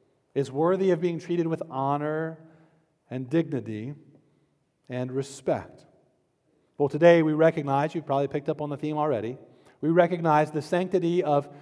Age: 40-59